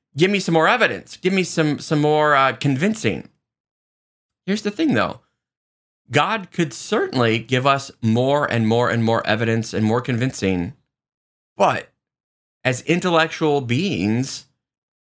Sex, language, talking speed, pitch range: male, English, 135 wpm, 120-190 Hz